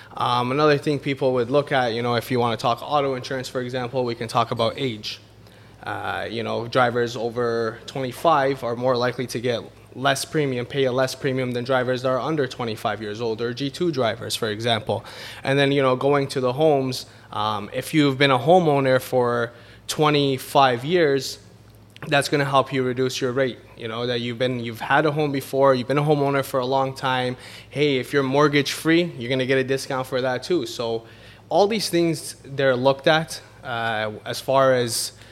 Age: 20-39